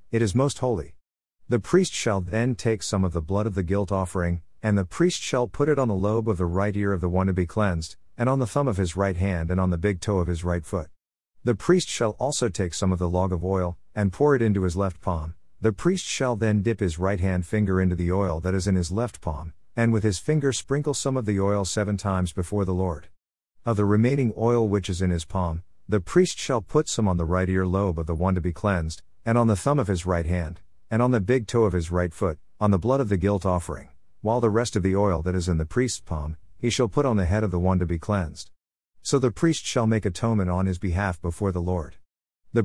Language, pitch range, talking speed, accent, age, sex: English, 90-115 Hz, 265 wpm, American, 50-69, male